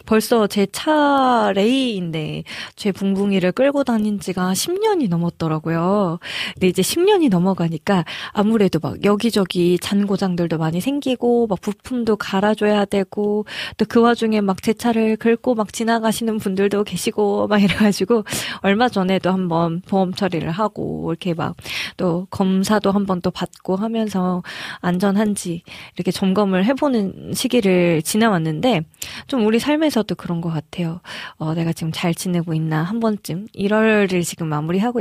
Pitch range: 180-235 Hz